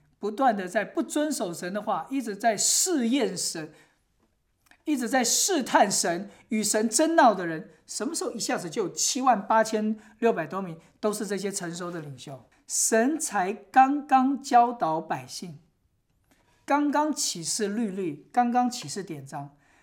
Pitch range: 175-245 Hz